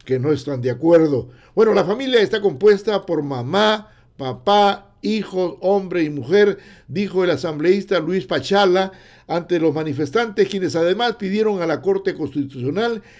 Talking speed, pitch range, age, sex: 145 wpm, 140-200 Hz, 60-79, male